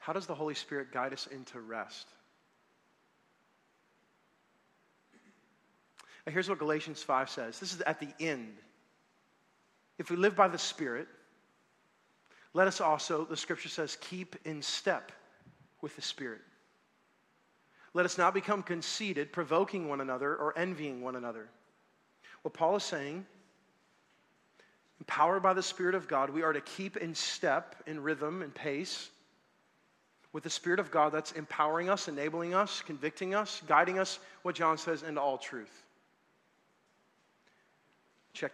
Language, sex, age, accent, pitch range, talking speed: English, male, 40-59, American, 150-200 Hz, 140 wpm